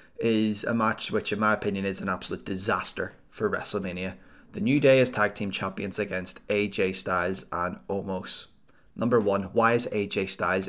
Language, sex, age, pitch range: English, male, 20-39, 100-115 Hz